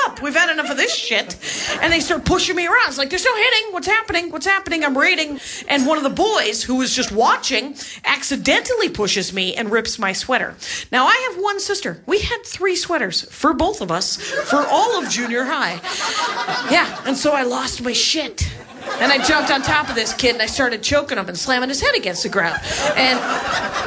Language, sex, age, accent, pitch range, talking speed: English, female, 40-59, American, 245-345 Hz, 215 wpm